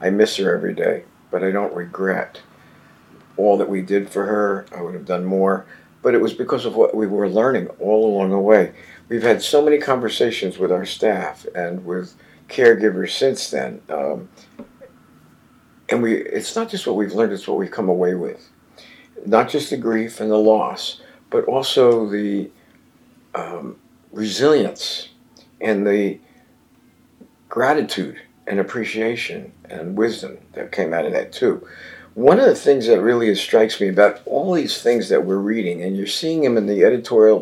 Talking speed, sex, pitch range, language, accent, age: 175 wpm, male, 100-115 Hz, English, American, 50-69